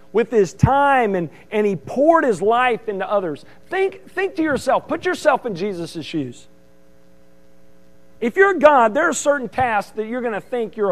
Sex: male